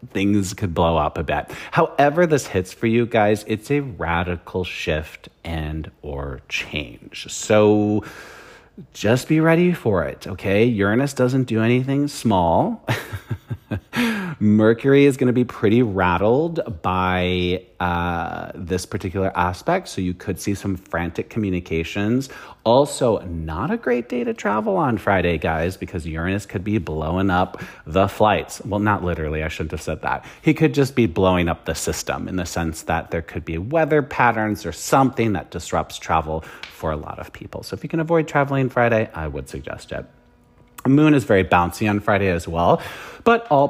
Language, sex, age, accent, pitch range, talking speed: English, male, 40-59, American, 90-135 Hz, 170 wpm